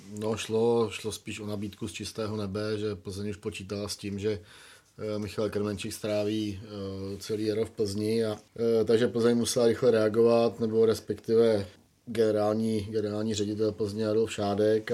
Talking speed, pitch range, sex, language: 155 wpm, 100-110 Hz, male, Czech